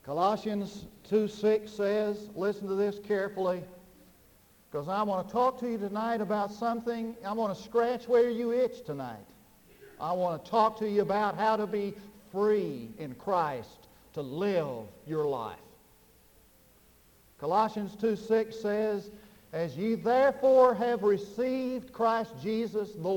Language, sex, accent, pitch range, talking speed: English, male, American, 185-220 Hz, 140 wpm